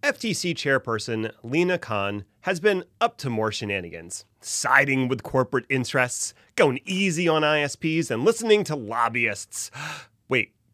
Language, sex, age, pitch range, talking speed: English, male, 30-49, 110-160 Hz, 130 wpm